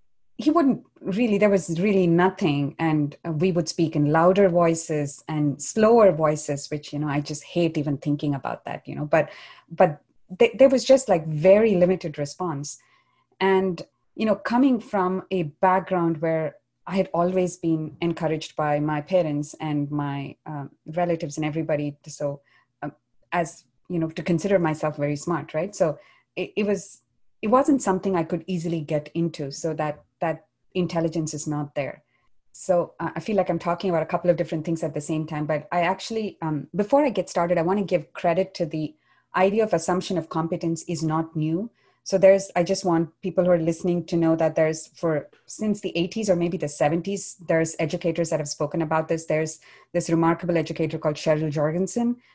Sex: female